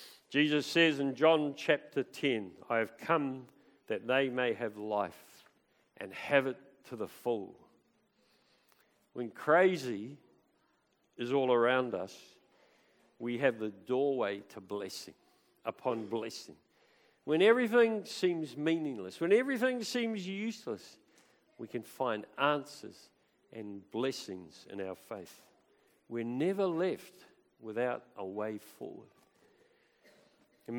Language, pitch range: English, 115-160 Hz